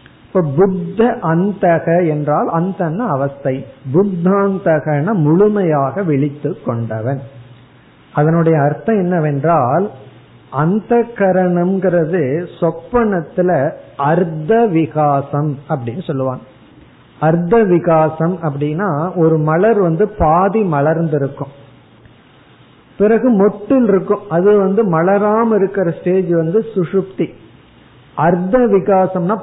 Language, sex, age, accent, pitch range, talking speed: Tamil, male, 50-69, native, 145-200 Hz, 70 wpm